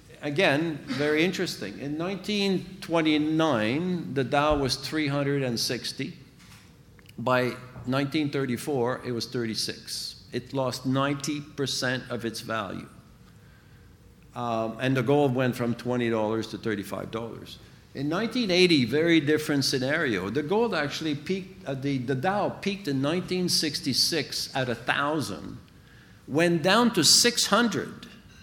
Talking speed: 105 wpm